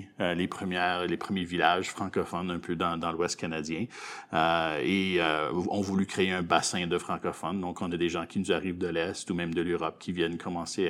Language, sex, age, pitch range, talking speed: French, male, 30-49, 90-100 Hz, 220 wpm